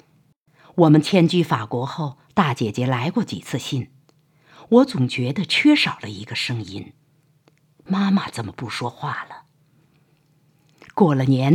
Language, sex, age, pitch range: Chinese, female, 50-69, 135-160 Hz